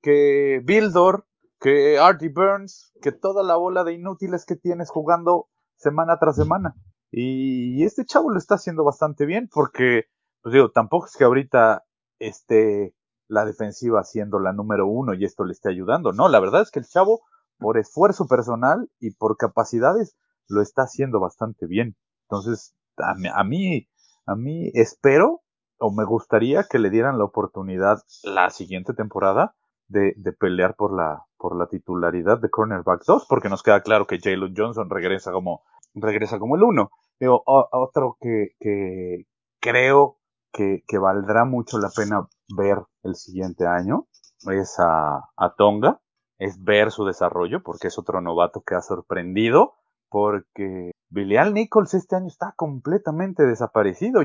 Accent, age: Mexican, 30-49